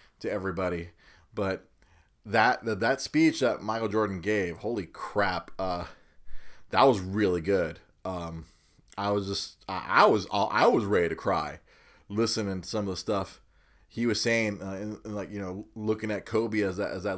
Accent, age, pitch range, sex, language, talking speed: American, 30-49, 100-150 Hz, male, English, 185 wpm